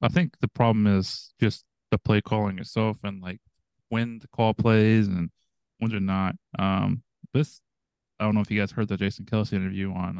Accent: American